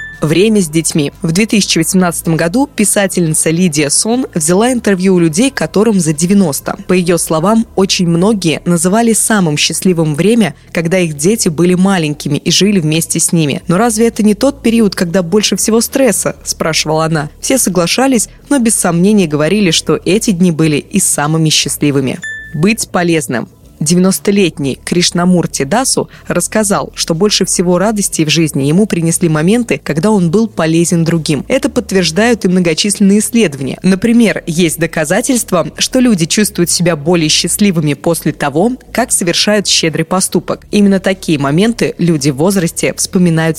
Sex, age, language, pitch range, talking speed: female, 20-39, Russian, 160-210 Hz, 145 wpm